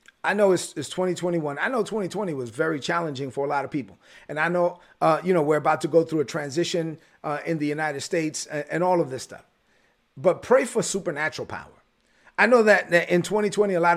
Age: 30-49